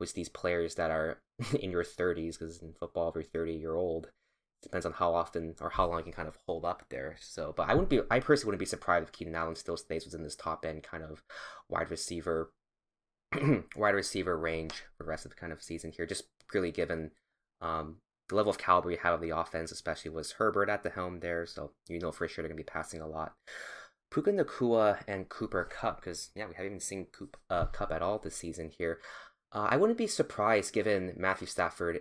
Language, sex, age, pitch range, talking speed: English, male, 20-39, 80-95 Hz, 230 wpm